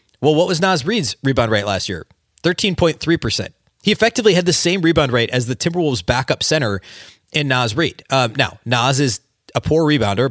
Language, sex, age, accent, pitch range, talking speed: English, male, 30-49, American, 115-160 Hz, 185 wpm